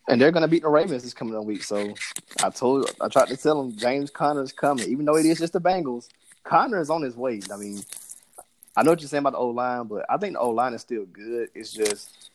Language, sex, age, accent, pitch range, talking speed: English, male, 20-39, American, 110-145 Hz, 275 wpm